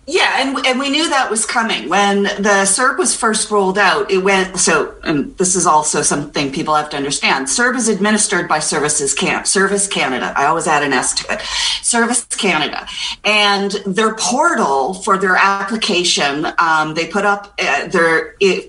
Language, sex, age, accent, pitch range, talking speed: English, female, 40-59, American, 175-220 Hz, 185 wpm